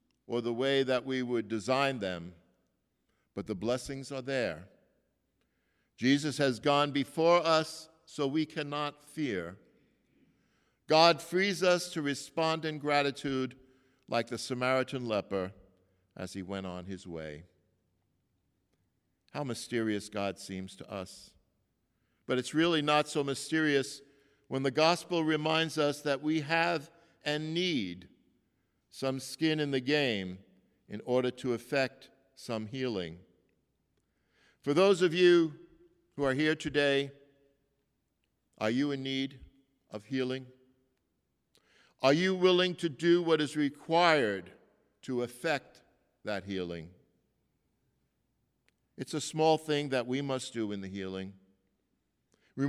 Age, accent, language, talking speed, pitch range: 60-79, American, English, 125 wpm, 110-155 Hz